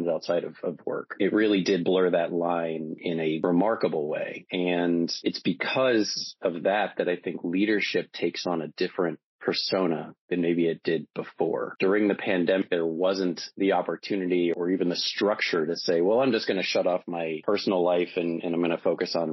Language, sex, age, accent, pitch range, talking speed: English, male, 30-49, American, 85-100 Hz, 195 wpm